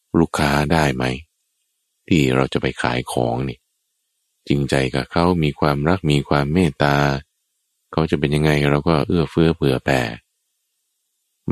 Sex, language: male, Thai